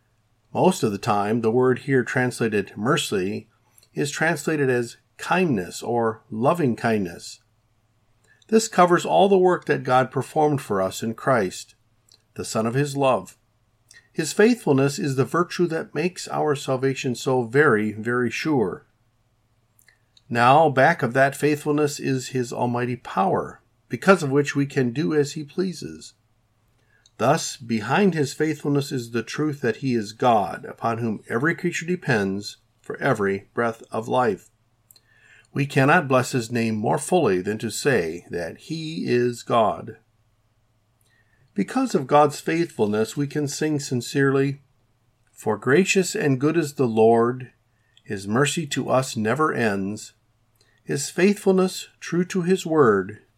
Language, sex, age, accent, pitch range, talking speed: English, male, 50-69, American, 110-150 Hz, 140 wpm